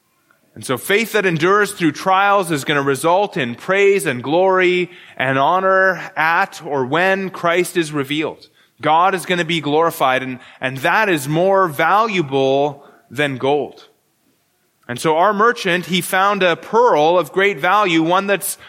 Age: 20-39